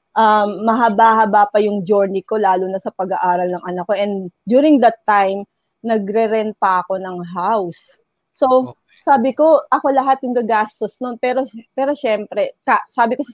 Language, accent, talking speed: Filipino, native, 160 wpm